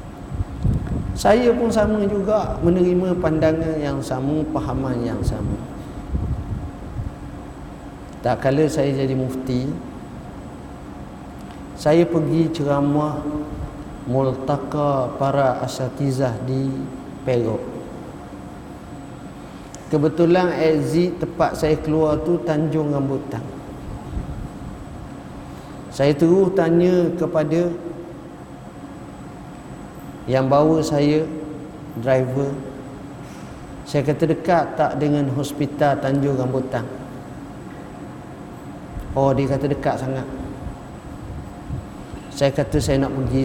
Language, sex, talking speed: Malay, male, 80 wpm